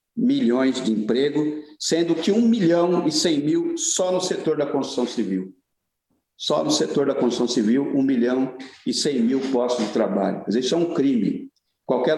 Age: 60-79